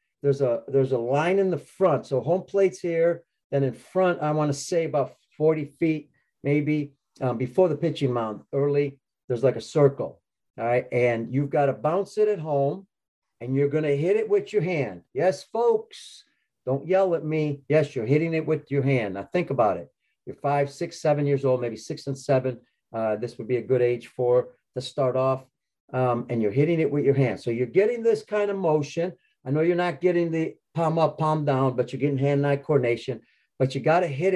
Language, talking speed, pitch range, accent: English, 215 wpm, 125-155 Hz, American